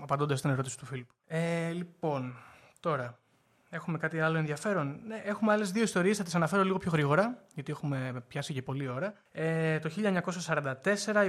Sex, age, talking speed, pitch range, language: male, 20-39, 170 wpm, 140-185 Hz, Greek